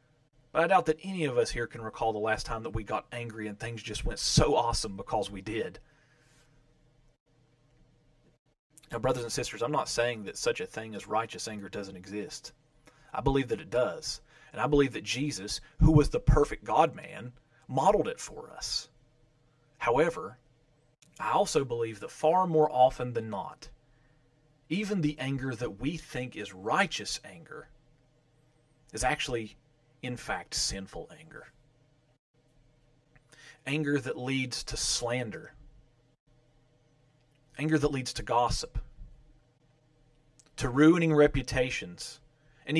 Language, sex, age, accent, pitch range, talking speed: English, male, 30-49, American, 120-155 Hz, 140 wpm